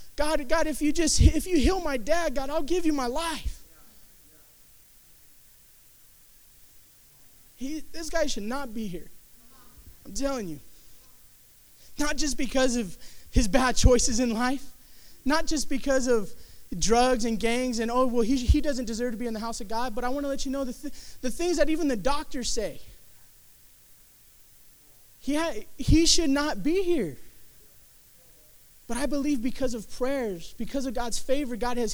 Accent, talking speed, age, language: American, 170 wpm, 20-39, English